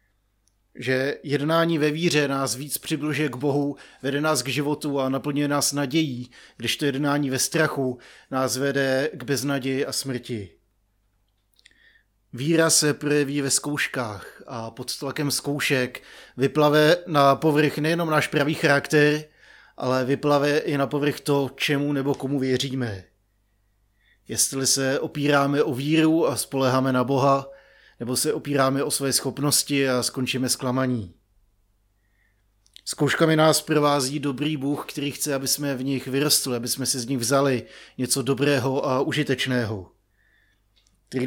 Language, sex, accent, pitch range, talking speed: Czech, male, native, 130-150 Hz, 140 wpm